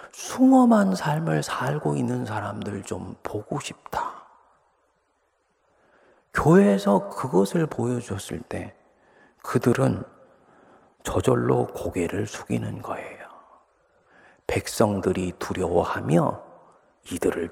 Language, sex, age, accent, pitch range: Korean, male, 40-59, native, 90-125 Hz